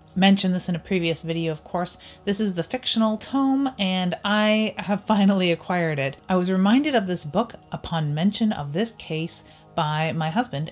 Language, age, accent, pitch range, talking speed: English, 30-49, American, 155-200 Hz, 185 wpm